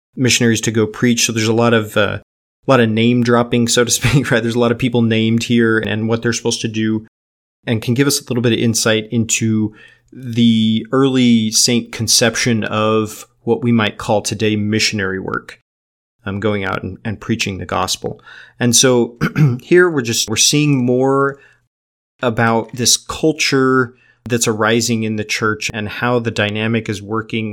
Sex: male